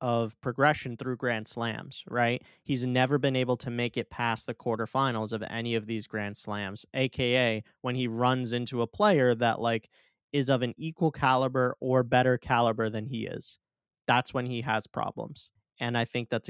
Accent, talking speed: American, 185 wpm